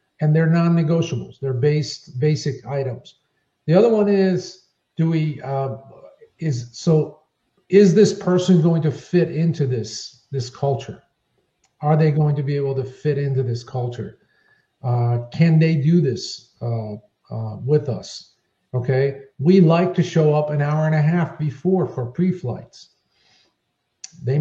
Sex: male